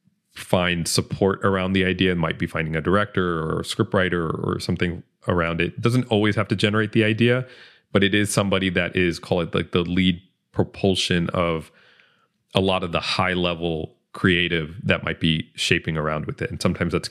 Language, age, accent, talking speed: English, 30-49, American, 195 wpm